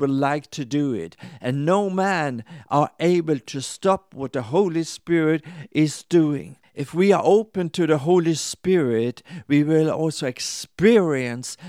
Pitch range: 135-175 Hz